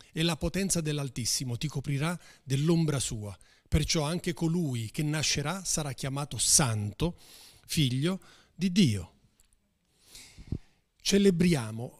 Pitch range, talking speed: 130-190 Hz, 100 wpm